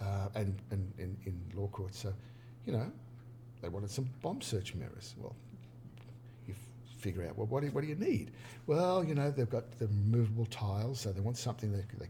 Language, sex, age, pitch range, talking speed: English, male, 50-69, 105-120 Hz, 210 wpm